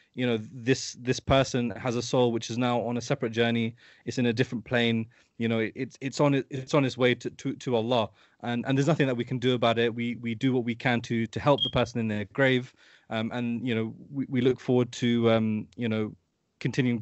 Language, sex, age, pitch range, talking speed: English, male, 20-39, 115-135 Hz, 250 wpm